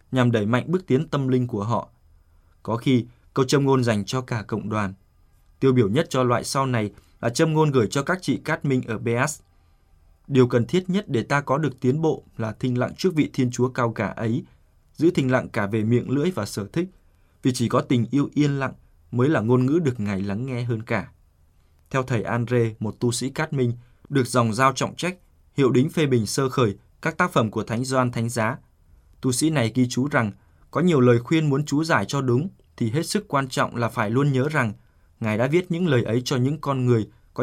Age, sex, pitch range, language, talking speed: 20-39, male, 110-135 Hz, Vietnamese, 235 wpm